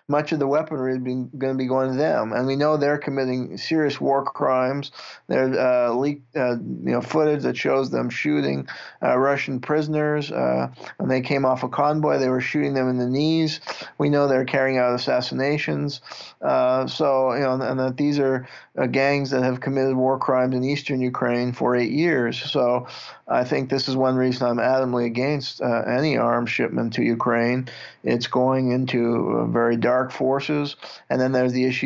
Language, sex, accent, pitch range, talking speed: English, male, American, 125-140 Hz, 190 wpm